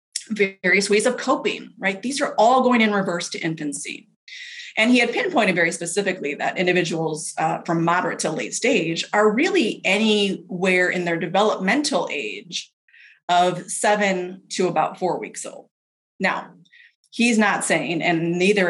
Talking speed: 150 wpm